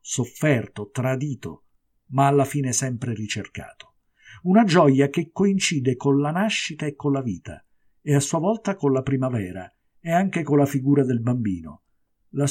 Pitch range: 120-160 Hz